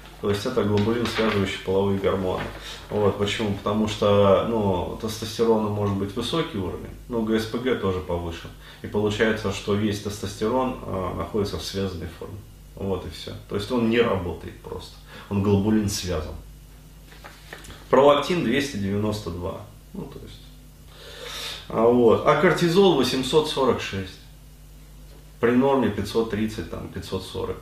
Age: 30-49